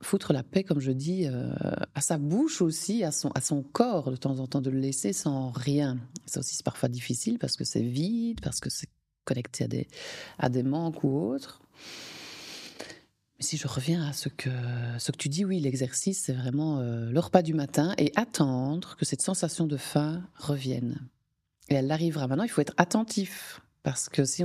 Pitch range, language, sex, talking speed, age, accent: 135-170 Hz, French, female, 205 wpm, 30-49, French